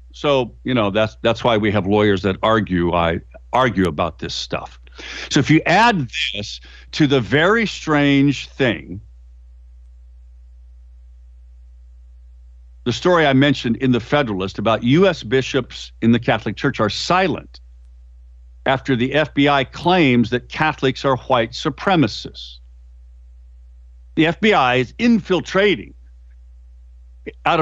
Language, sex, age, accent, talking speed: English, male, 60-79, American, 120 wpm